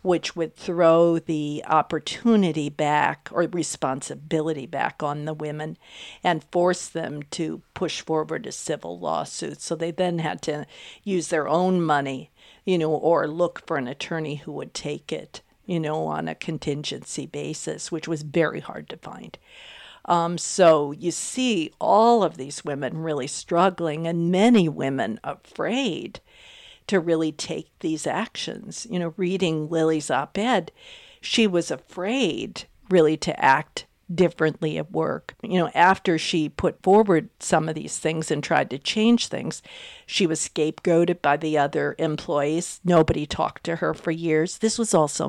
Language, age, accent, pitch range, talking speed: English, 50-69, American, 155-185 Hz, 155 wpm